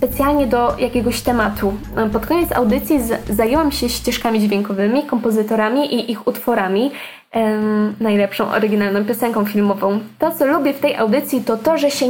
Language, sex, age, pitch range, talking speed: Polish, female, 10-29, 215-275 Hz, 145 wpm